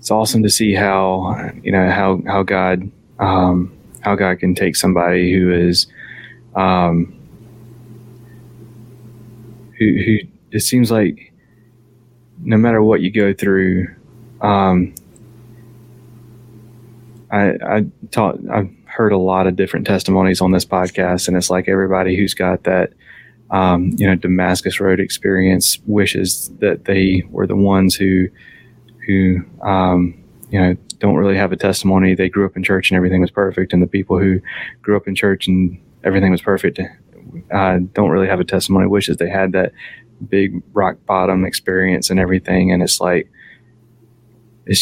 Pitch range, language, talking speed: 95-110 Hz, English, 155 wpm